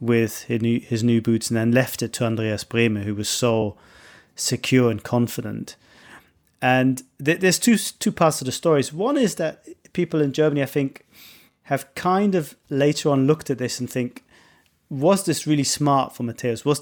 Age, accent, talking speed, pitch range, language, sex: 30-49, British, 190 wpm, 115-135 Hz, English, male